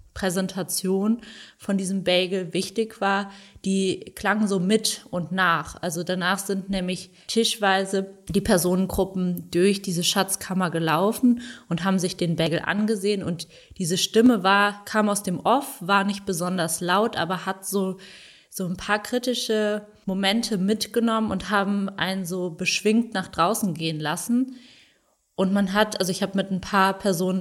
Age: 20-39